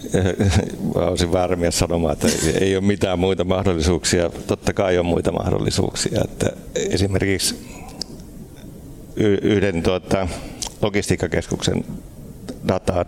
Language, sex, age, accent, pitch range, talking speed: Finnish, male, 60-79, native, 85-95 Hz, 95 wpm